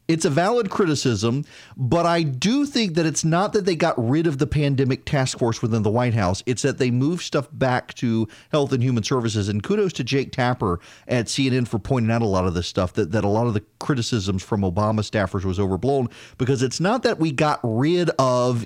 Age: 40-59